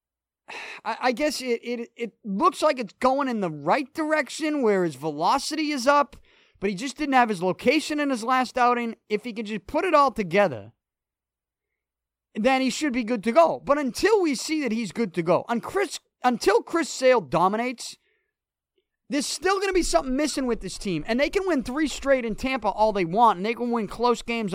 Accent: American